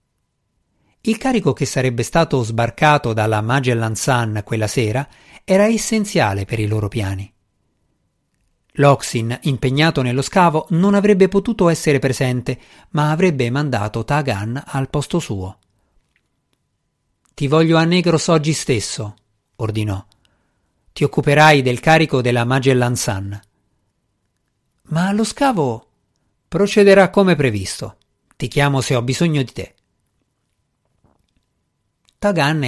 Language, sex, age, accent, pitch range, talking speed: Italian, male, 50-69, native, 110-150 Hz, 110 wpm